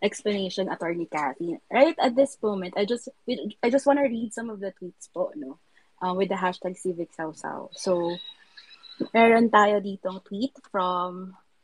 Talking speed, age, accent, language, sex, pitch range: 170 wpm, 20-39, native, Filipino, female, 180-235 Hz